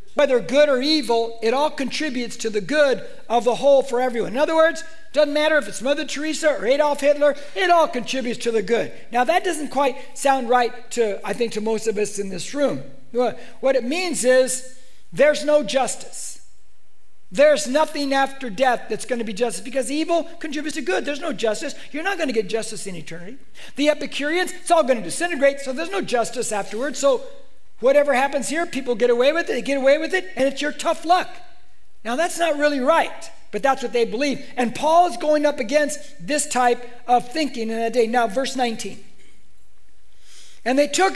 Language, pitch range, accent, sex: English, 230-295 Hz, American, male